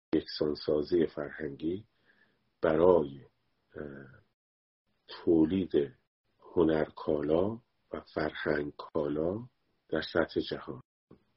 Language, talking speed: Persian, 55 wpm